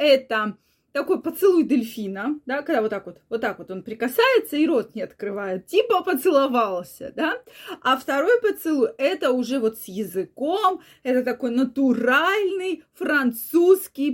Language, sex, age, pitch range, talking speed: Russian, female, 20-39, 240-325 Hz, 145 wpm